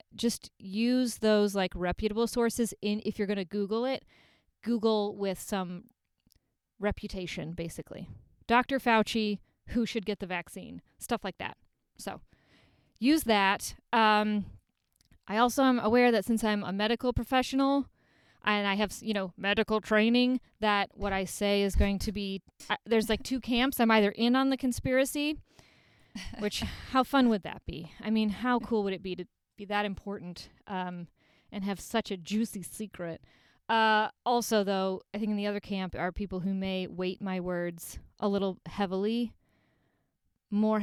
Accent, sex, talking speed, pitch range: American, female, 165 wpm, 185-225 Hz